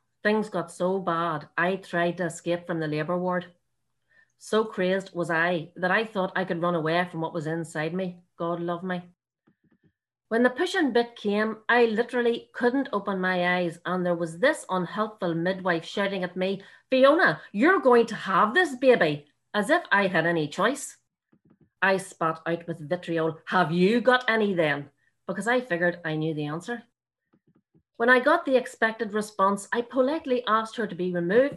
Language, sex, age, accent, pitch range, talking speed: English, female, 40-59, Irish, 175-230 Hz, 180 wpm